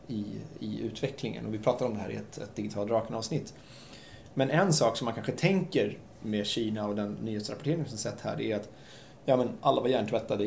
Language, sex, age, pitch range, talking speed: Swedish, male, 20-39, 110-145 Hz, 205 wpm